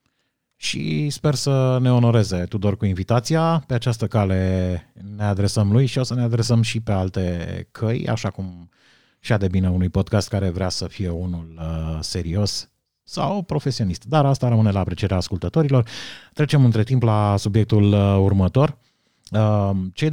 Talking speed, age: 160 wpm, 30-49